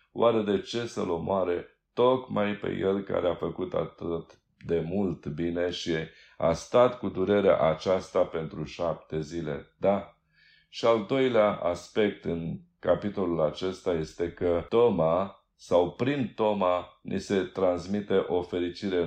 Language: Romanian